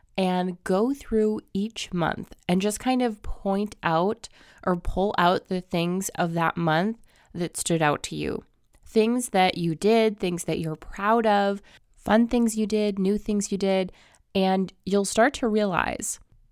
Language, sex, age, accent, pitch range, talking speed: English, female, 20-39, American, 160-195 Hz, 165 wpm